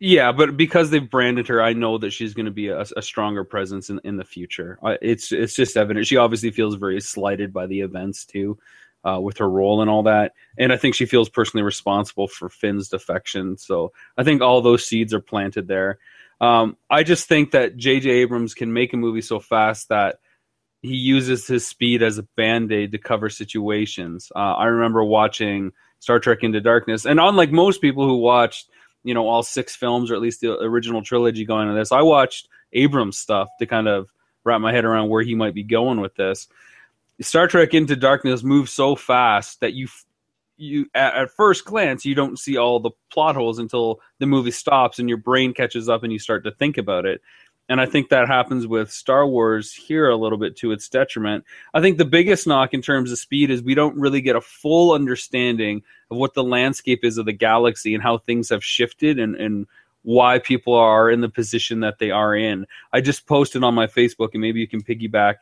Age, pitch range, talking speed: 30-49, 110-130 Hz, 215 wpm